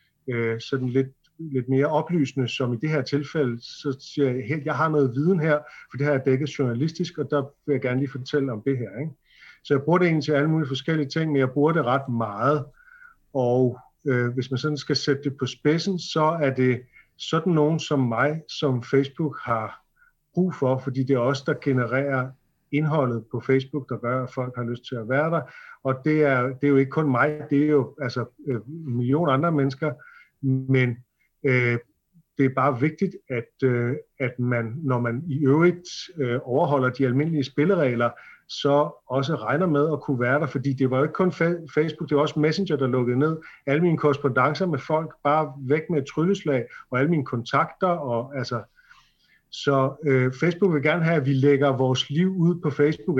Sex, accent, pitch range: male, native, 130-155 Hz